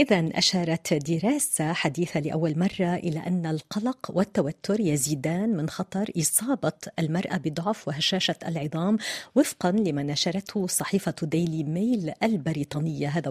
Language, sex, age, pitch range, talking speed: Arabic, female, 40-59, 170-220 Hz, 115 wpm